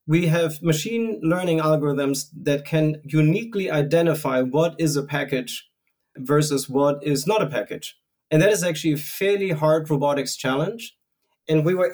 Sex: male